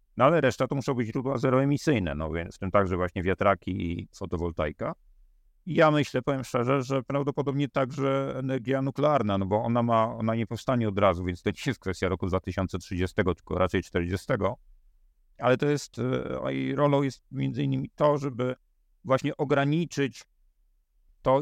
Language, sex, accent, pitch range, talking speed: Polish, male, native, 90-120 Hz, 165 wpm